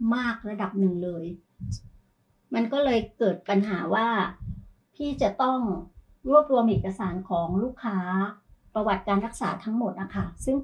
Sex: male